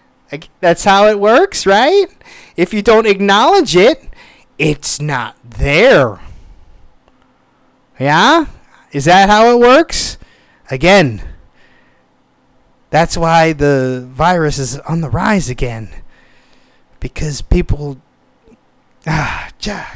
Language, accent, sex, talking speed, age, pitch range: English, American, male, 100 wpm, 30-49, 130-190 Hz